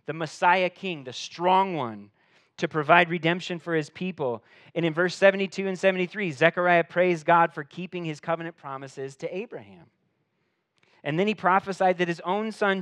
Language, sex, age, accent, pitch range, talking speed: English, male, 30-49, American, 135-180 Hz, 170 wpm